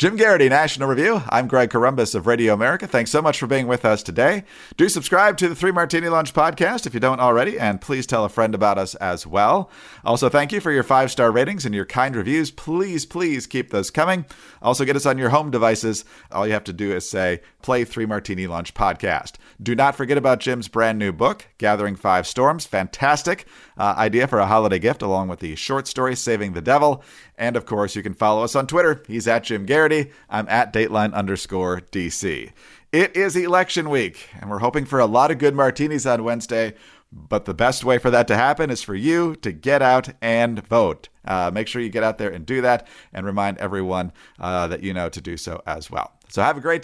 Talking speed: 225 wpm